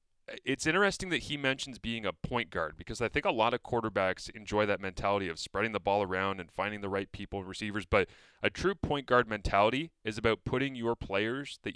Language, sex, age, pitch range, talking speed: English, male, 30-49, 100-130 Hz, 220 wpm